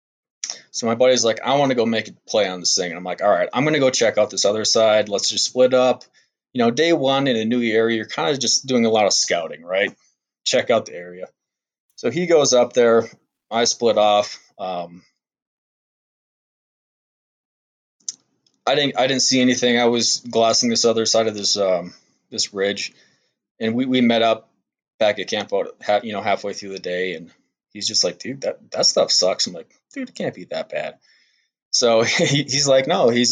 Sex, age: male, 20-39